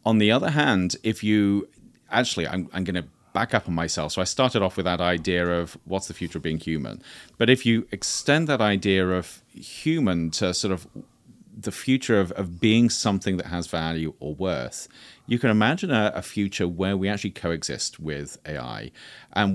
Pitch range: 85-105 Hz